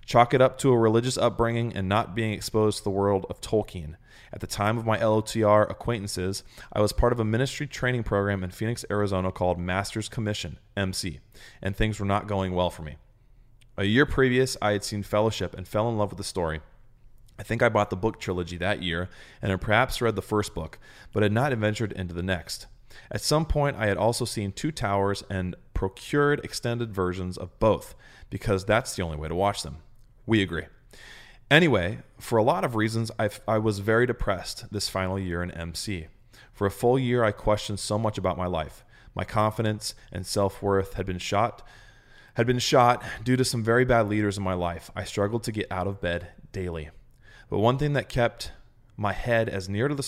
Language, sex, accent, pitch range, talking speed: English, male, American, 95-115 Hz, 205 wpm